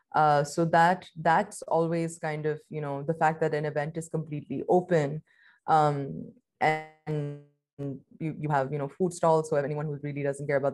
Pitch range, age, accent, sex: 145-165 Hz, 20-39, Indian, female